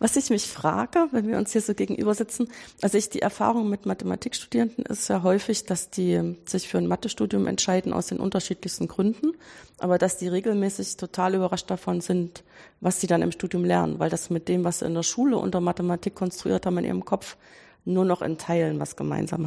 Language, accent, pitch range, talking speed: German, German, 165-210 Hz, 205 wpm